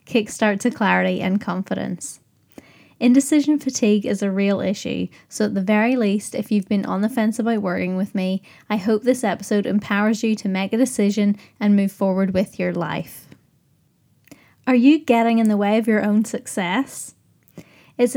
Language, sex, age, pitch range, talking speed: English, female, 10-29, 195-235 Hz, 175 wpm